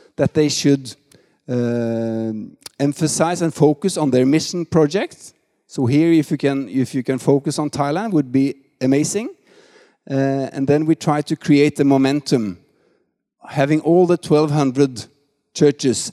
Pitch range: 125-155 Hz